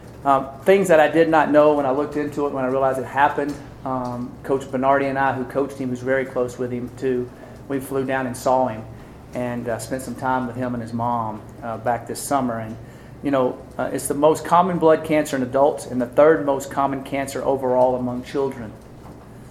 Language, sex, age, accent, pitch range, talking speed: English, male, 40-59, American, 125-140 Hz, 220 wpm